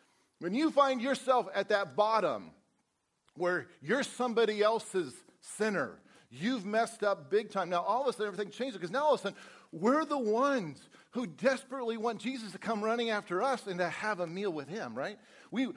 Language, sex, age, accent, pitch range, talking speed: English, male, 50-69, American, 170-225 Hz, 195 wpm